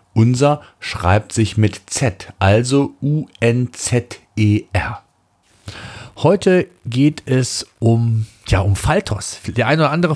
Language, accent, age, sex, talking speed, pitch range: German, German, 40-59, male, 100 wpm, 115-150 Hz